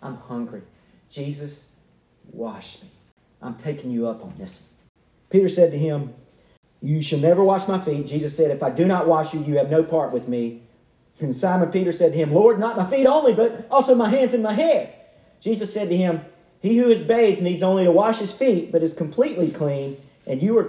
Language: English